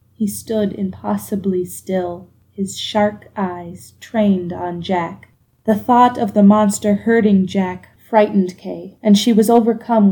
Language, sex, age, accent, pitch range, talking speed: English, female, 20-39, American, 190-235 Hz, 135 wpm